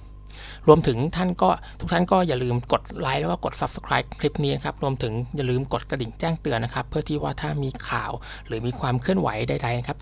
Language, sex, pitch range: Thai, male, 120-155 Hz